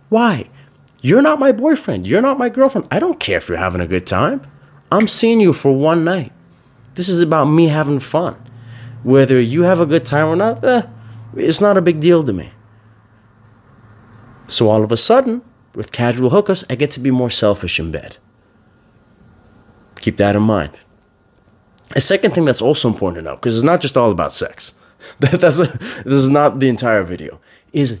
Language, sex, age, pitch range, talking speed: English, male, 30-49, 110-165 Hz, 190 wpm